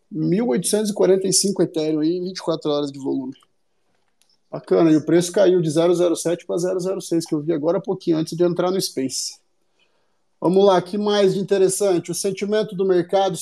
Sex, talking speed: male, 165 wpm